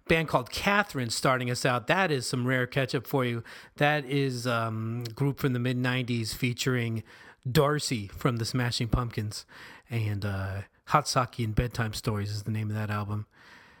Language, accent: English, American